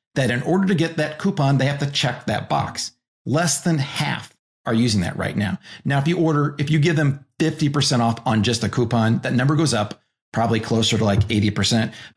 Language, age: English, 40-59